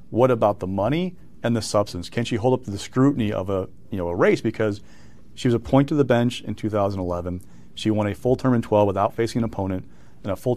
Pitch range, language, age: 105-120 Hz, English, 40-59